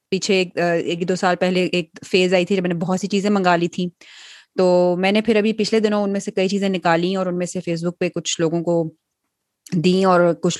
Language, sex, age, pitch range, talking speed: Urdu, female, 20-39, 165-190 Hz, 250 wpm